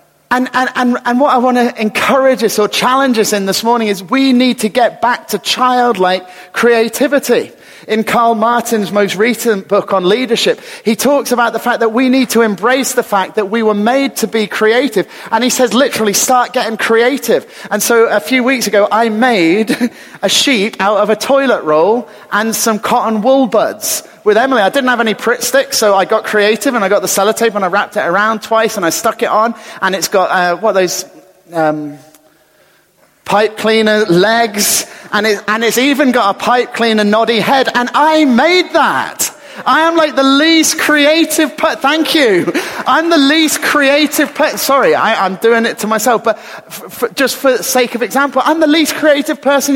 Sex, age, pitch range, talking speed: male, 30-49, 210-270 Hz, 200 wpm